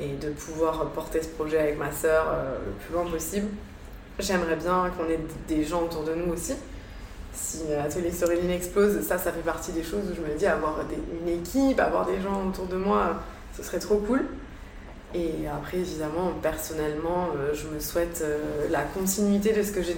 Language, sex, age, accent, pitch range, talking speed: French, female, 20-39, French, 160-195 Hz, 205 wpm